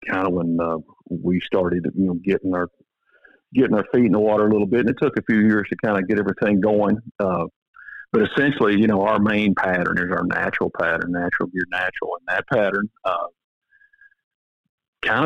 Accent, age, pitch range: American, 50-69, 90-110 Hz